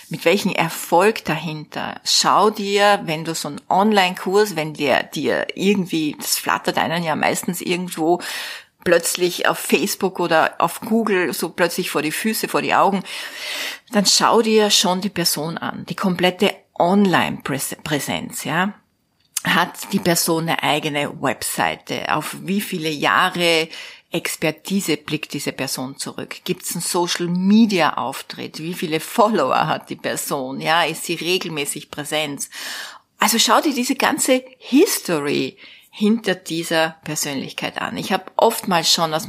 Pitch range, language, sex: 160-205 Hz, German, female